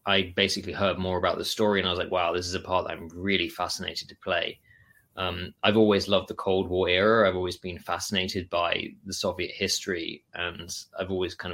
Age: 20-39